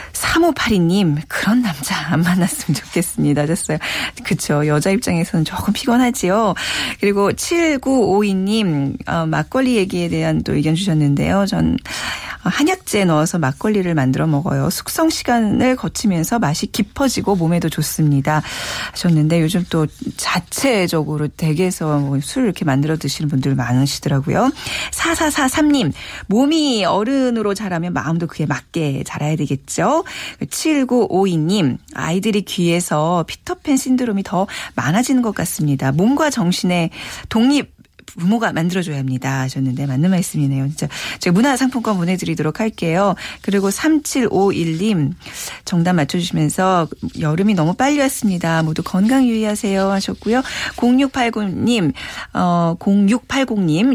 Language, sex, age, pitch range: Korean, female, 40-59, 160-240 Hz